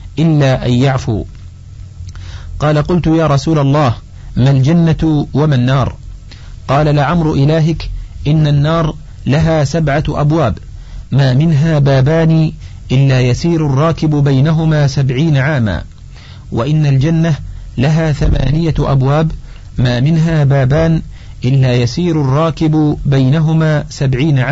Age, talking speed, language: 50-69, 105 wpm, Arabic